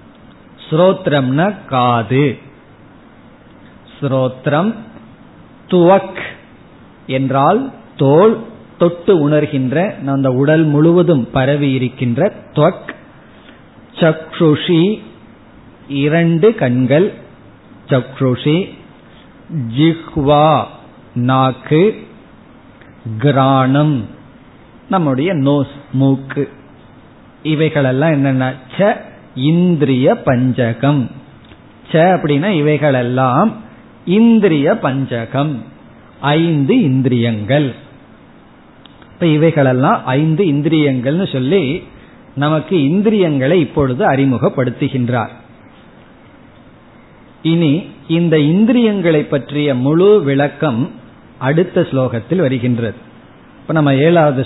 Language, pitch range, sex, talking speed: Tamil, 130-165 Hz, male, 45 wpm